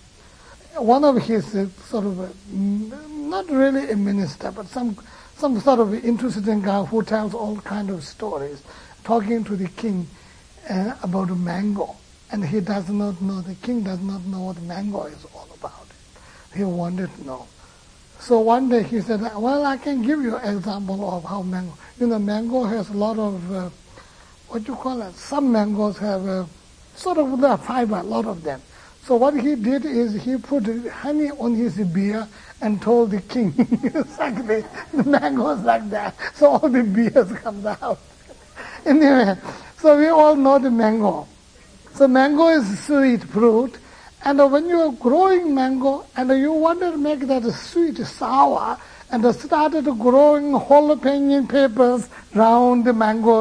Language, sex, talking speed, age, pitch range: English, male, 175 wpm, 60-79, 205-275 Hz